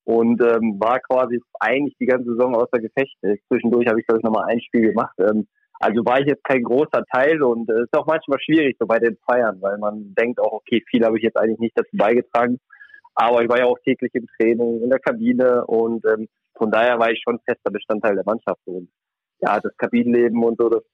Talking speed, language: 230 wpm, German